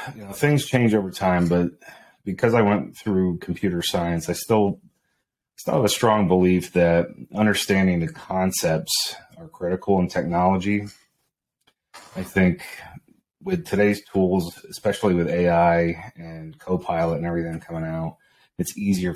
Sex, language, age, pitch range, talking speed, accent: male, English, 30-49, 80-100 Hz, 140 wpm, American